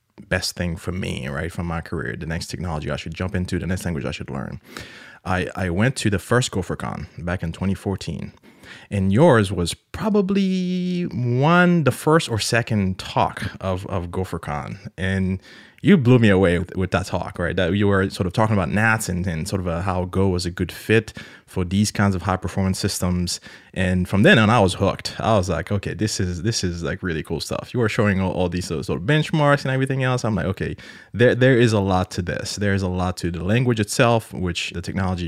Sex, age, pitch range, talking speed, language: male, 20-39, 85-110 Hz, 220 wpm, English